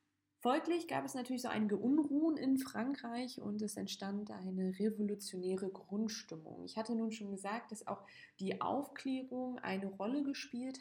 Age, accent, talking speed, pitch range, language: 20-39, German, 150 wpm, 190-235 Hz, German